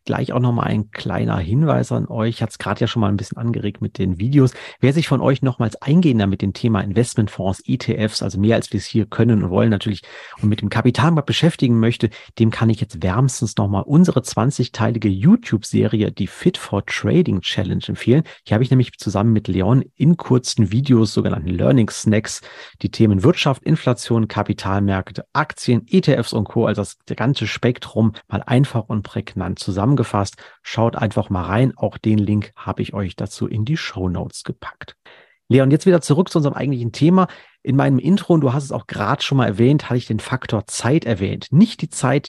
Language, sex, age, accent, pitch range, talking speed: German, male, 40-59, German, 105-130 Hz, 195 wpm